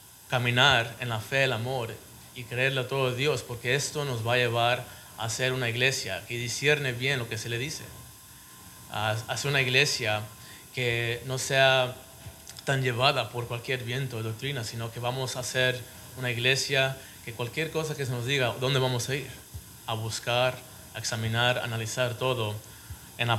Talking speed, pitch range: 180 wpm, 115-130 Hz